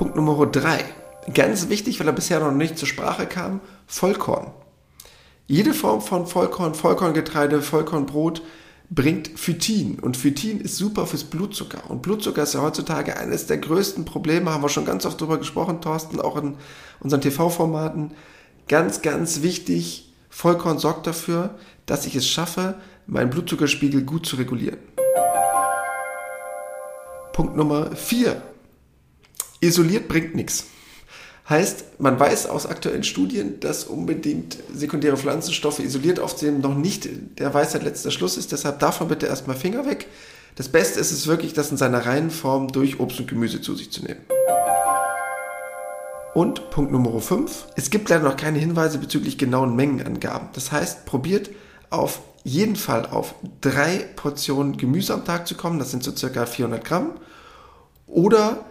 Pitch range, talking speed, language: 135-170 Hz, 150 wpm, German